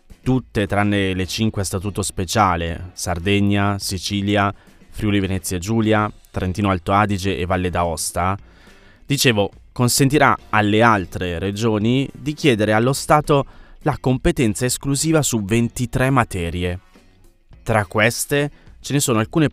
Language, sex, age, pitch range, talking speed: Italian, male, 20-39, 95-125 Hz, 115 wpm